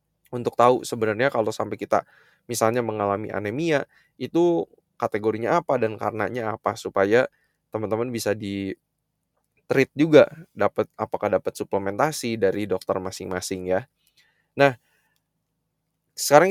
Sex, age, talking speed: male, 20-39, 110 wpm